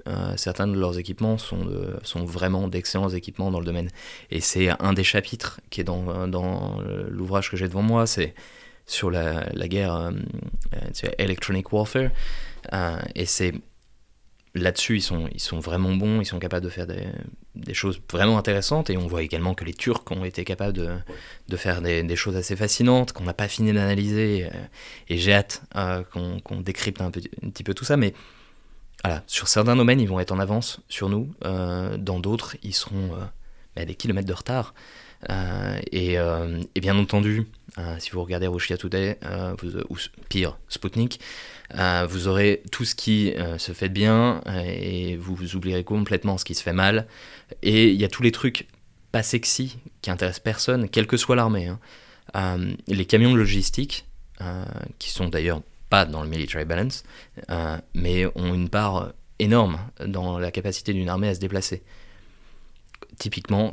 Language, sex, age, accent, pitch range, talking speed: French, male, 20-39, French, 90-105 Hz, 190 wpm